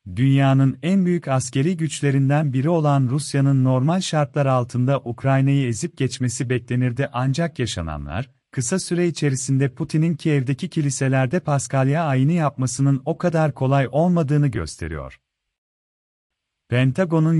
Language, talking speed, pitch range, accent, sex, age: Turkish, 110 wpm, 130-155 Hz, native, male, 40-59